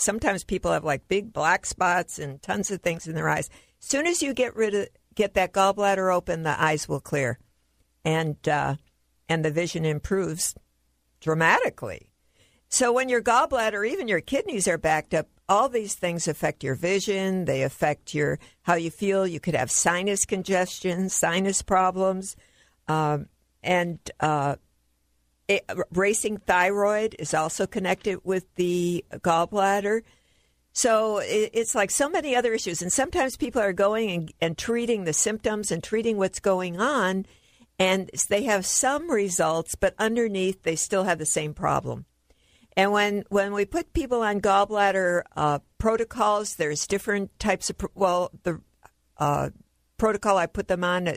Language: English